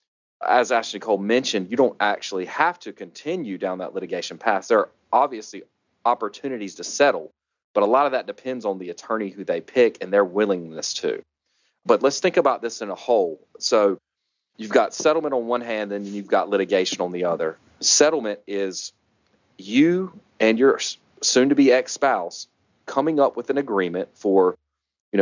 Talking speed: 170 wpm